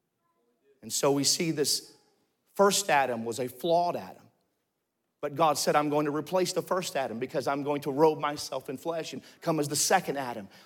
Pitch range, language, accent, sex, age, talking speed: 150-195 Hz, English, American, male, 40-59, 195 wpm